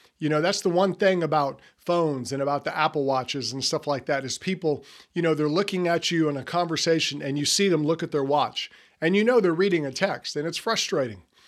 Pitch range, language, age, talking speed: 150-195 Hz, English, 50-69, 240 wpm